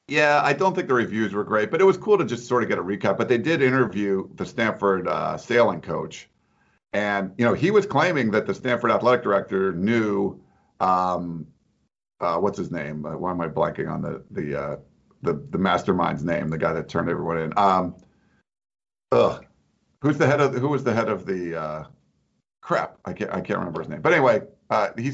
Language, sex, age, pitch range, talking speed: English, male, 50-69, 95-130 Hz, 210 wpm